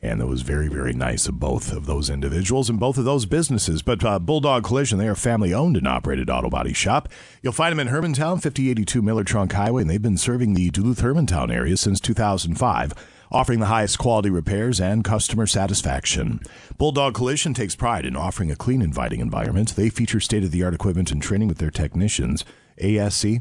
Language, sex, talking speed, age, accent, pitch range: English, male, 190 wpm, 50-69, American, 90-125 Hz